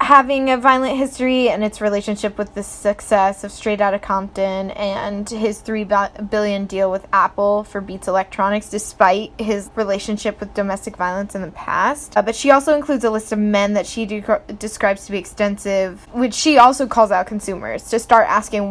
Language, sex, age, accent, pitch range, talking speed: English, female, 10-29, American, 200-235 Hz, 185 wpm